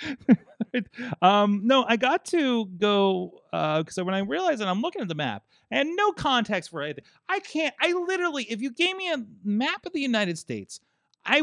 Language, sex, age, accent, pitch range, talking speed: English, male, 30-49, American, 120-205 Hz, 195 wpm